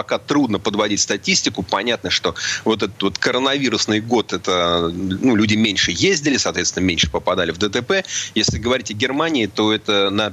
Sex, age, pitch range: male, 30-49, 95-125 Hz